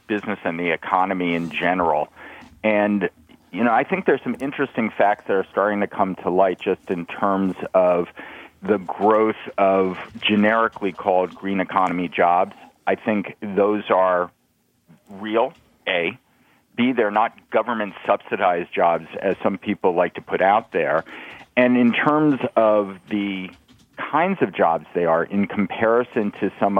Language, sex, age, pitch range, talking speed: English, male, 40-59, 95-115 Hz, 150 wpm